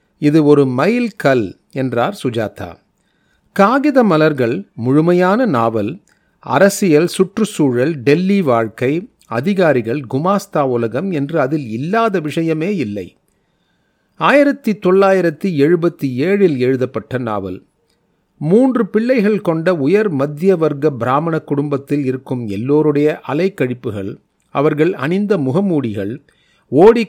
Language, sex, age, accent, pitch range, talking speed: Tamil, male, 40-59, native, 135-185 Hz, 95 wpm